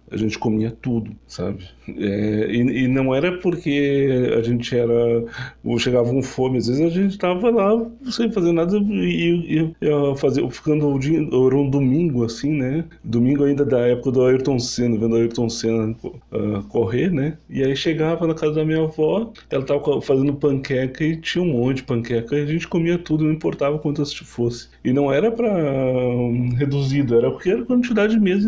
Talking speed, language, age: 205 wpm, Portuguese, 20-39